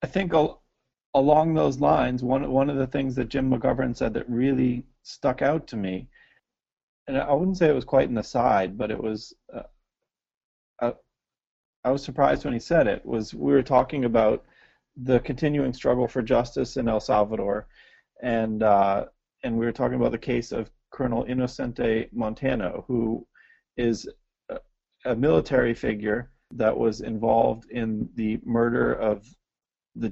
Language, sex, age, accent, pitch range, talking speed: English, male, 40-59, American, 110-140 Hz, 165 wpm